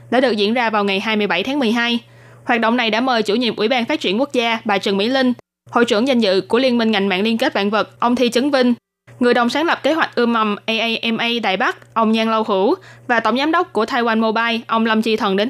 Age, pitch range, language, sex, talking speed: 20-39, 210-255 Hz, Vietnamese, female, 270 wpm